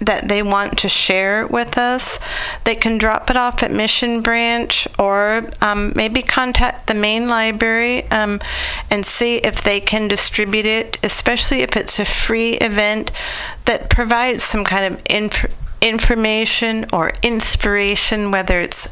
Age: 40-59